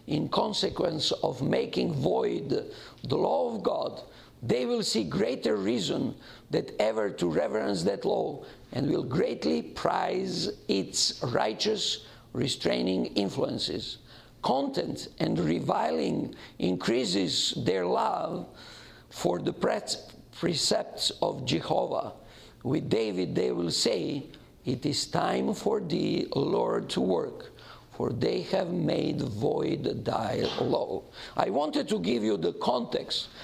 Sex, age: male, 50-69